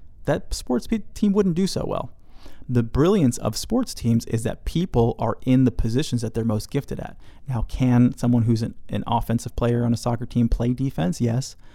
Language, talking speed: English, 200 wpm